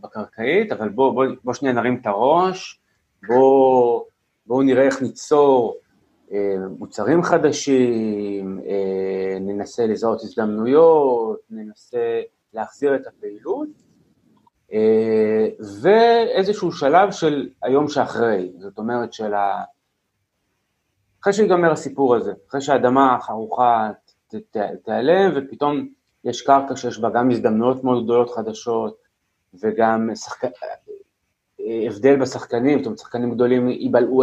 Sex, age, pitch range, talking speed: male, 30-49, 115-150 Hz, 110 wpm